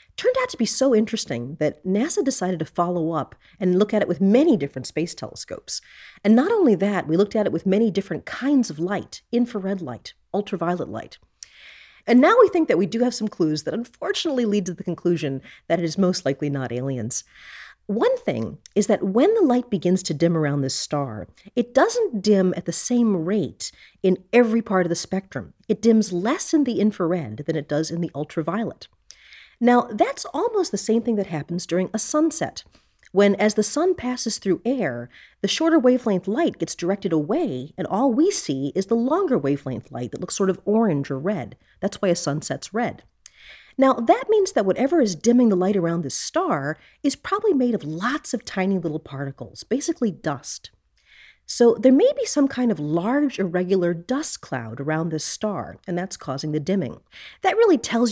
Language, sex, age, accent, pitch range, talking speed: English, female, 40-59, American, 160-235 Hz, 195 wpm